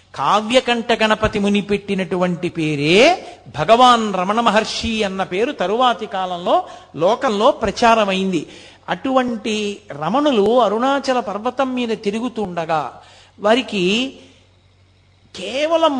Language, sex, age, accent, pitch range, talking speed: Telugu, male, 60-79, native, 190-260 Hz, 85 wpm